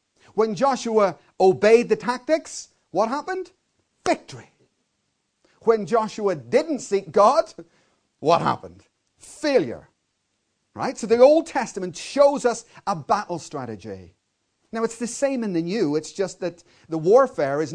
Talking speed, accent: 130 wpm, British